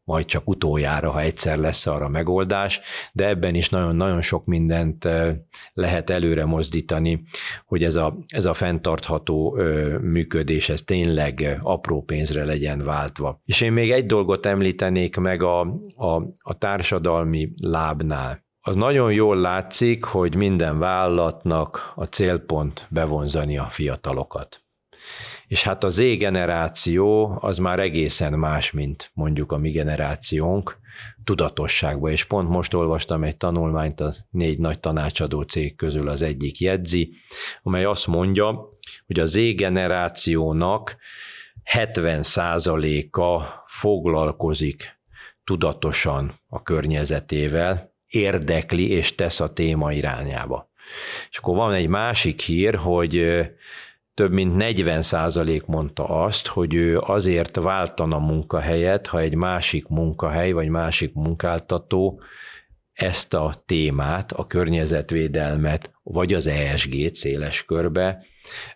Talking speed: 115 wpm